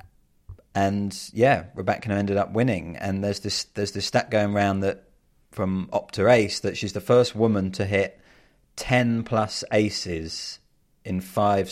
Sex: male